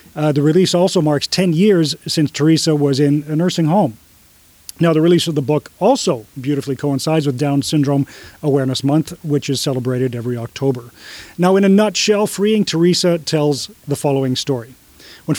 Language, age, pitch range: English, 40-59, 140-180 Hz